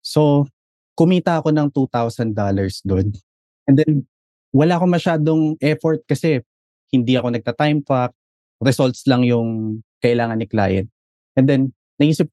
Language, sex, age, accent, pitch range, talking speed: English, male, 20-39, Filipino, 105-140 Hz, 125 wpm